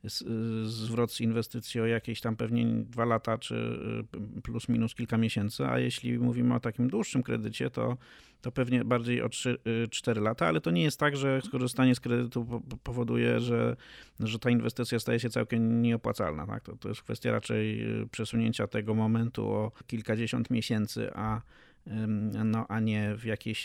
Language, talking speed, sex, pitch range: Polish, 165 wpm, male, 115-125 Hz